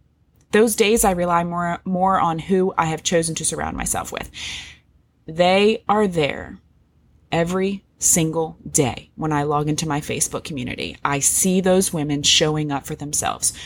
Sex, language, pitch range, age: female, English, 155-195 Hz, 20-39